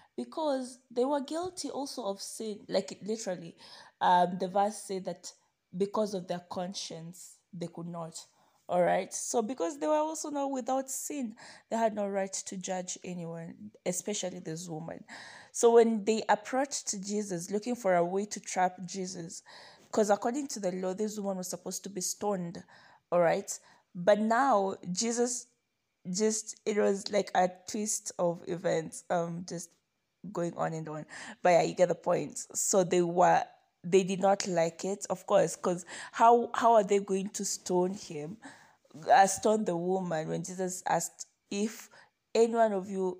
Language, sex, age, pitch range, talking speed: English, female, 20-39, 180-220 Hz, 165 wpm